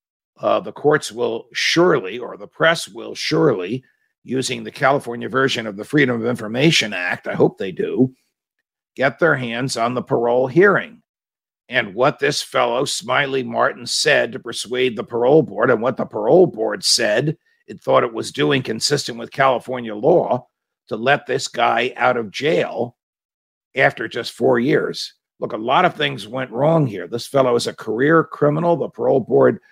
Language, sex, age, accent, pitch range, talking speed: English, male, 50-69, American, 125-165 Hz, 175 wpm